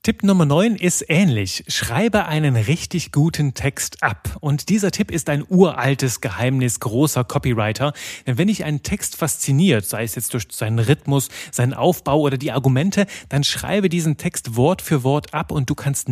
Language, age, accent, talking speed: German, 30-49, German, 180 wpm